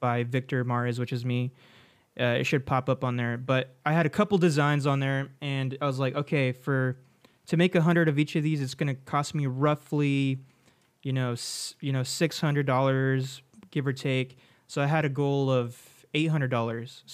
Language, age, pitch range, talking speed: English, 20-39, 125-145 Hz, 195 wpm